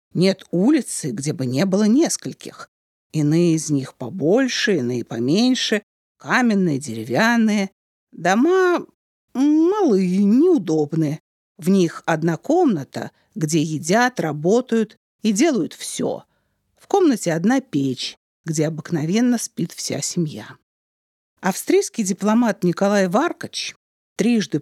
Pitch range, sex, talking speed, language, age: 155-225 Hz, female, 100 wpm, Russian, 50-69